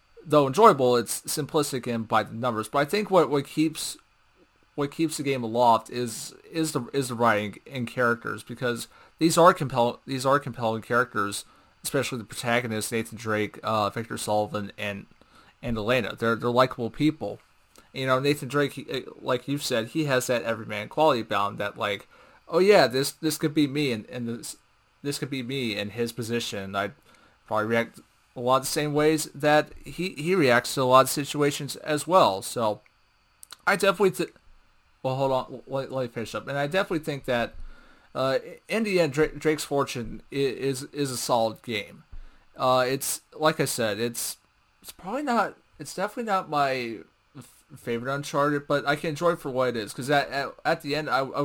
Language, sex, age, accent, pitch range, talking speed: English, male, 30-49, American, 115-150 Hz, 190 wpm